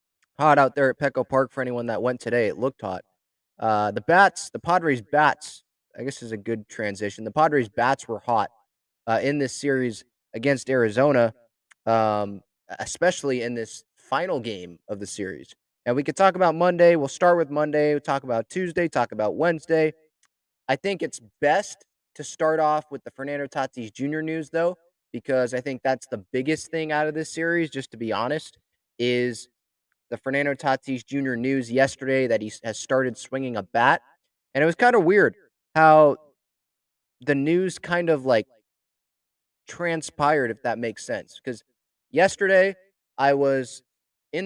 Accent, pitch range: American, 120-155 Hz